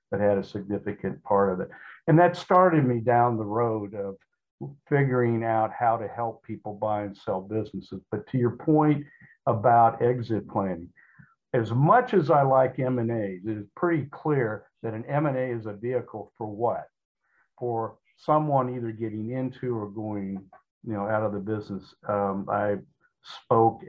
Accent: American